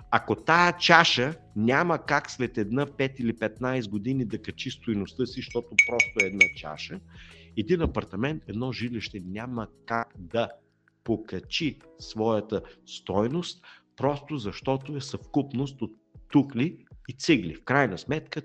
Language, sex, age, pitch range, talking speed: Bulgarian, male, 50-69, 105-140 Hz, 130 wpm